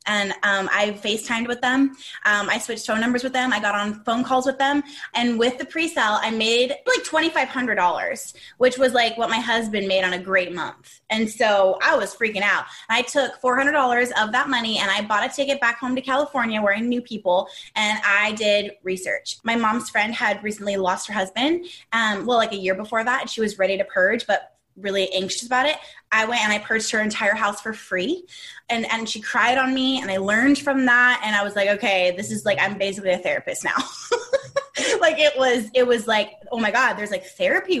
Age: 20-39